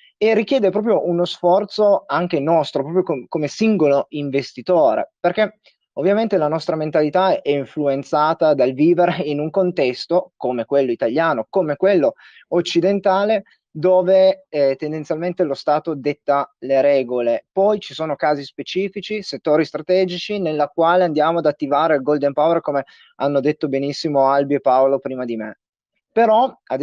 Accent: native